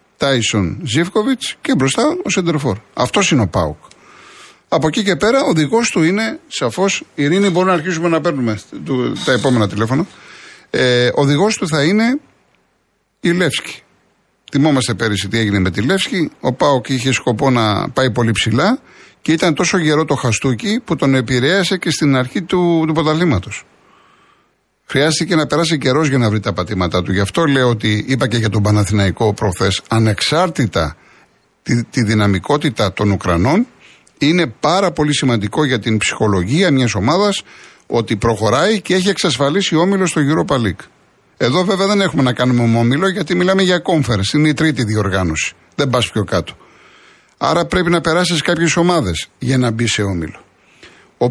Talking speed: 165 wpm